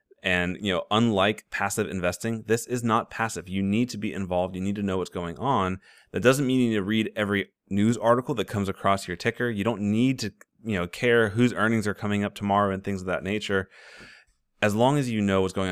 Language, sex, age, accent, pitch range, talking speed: English, male, 30-49, American, 95-115 Hz, 235 wpm